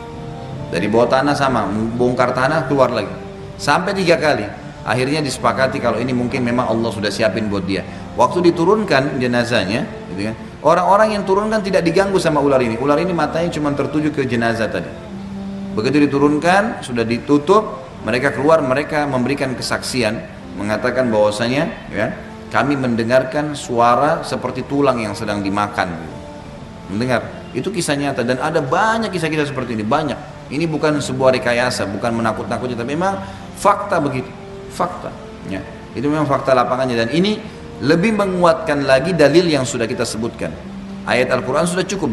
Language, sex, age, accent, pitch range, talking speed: Indonesian, male, 30-49, native, 115-150 Hz, 140 wpm